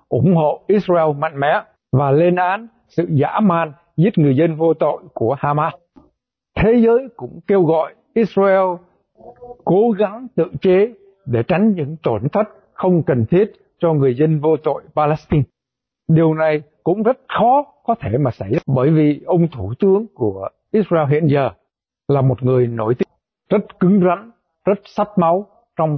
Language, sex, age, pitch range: Vietnamese, male, 60-79, 150-190 Hz